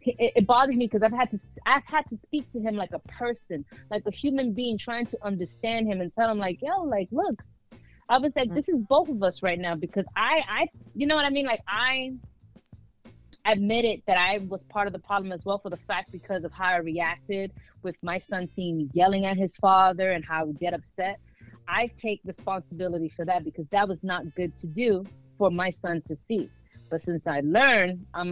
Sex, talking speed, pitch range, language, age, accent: female, 220 wpm, 165-225 Hz, English, 30-49, American